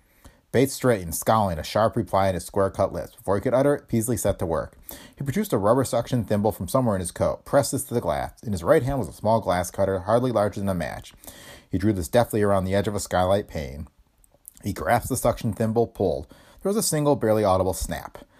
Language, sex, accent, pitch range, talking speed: English, male, American, 90-130 Hz, 240 wpm